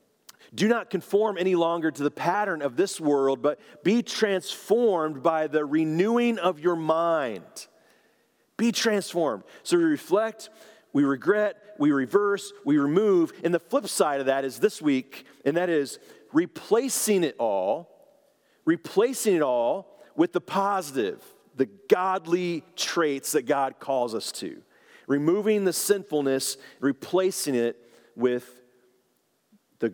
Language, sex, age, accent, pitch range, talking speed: English, male, 40-59, American, 135-215 Hz, 135 wpm